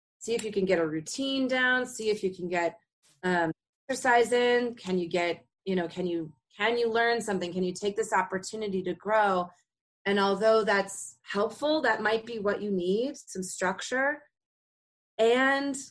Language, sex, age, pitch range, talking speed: English, female, 30-49, 170-230 Hz, 175 wpm